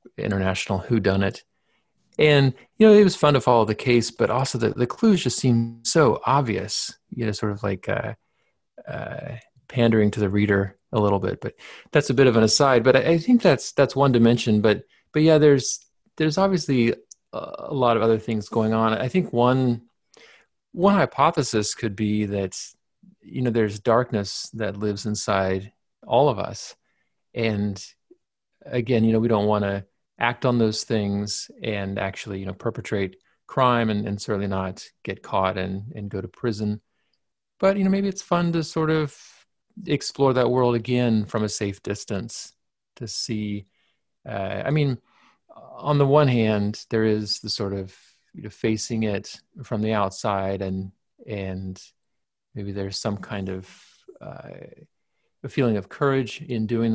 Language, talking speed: English, 170 wpm